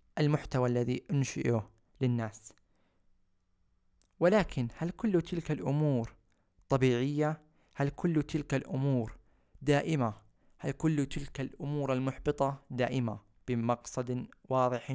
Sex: male